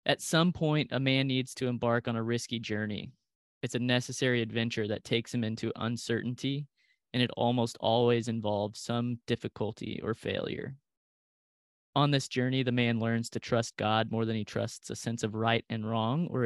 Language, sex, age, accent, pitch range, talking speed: English, male, 20-39, American, 115-130 Hz, 180 wpm